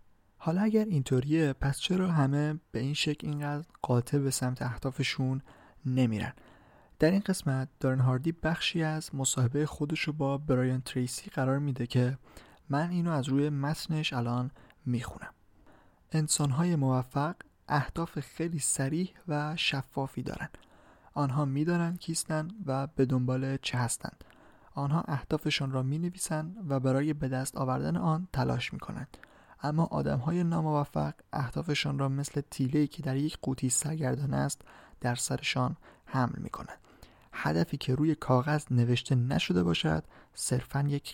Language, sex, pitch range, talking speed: Persian, male, 130-155 Hz, 135 wpm